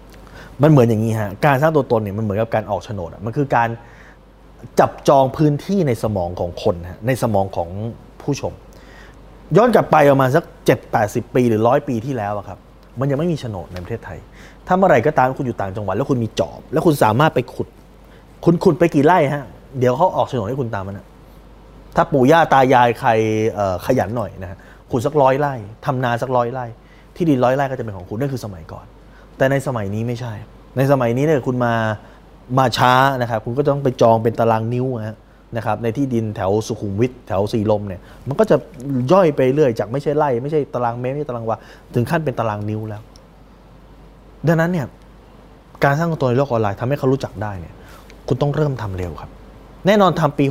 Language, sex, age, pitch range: Thai, male, 20-39, 110-145 Hz